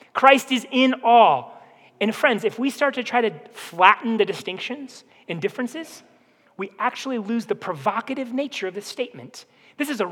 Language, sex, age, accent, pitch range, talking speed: English, male, 30-49, American, 210-265 Hz, 170 wpm